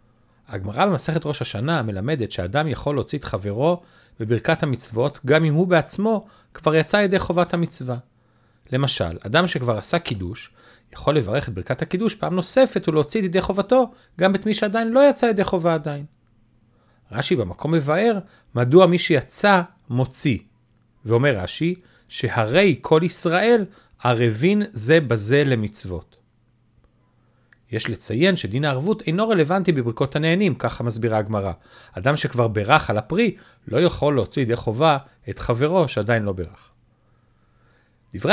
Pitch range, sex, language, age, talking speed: 115-170 Hz, male, Hebrew, 40-59, 140 wpm